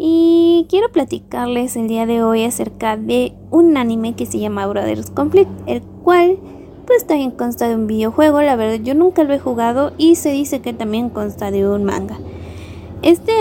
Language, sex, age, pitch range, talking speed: Spanish, female, 20-39, 245-325 Hz, 185 wpm